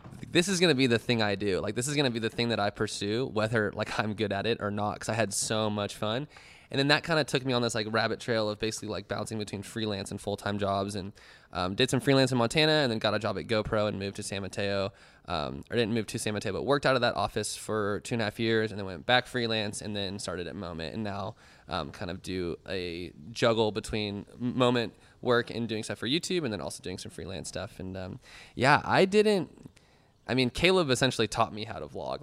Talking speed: 260 wpm